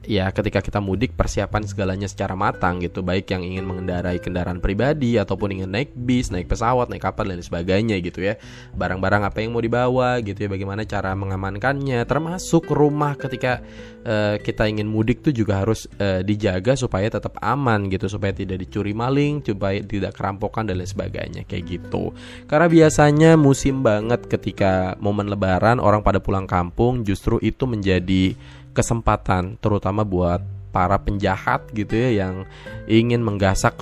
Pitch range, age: 95-115 Hz, 20-39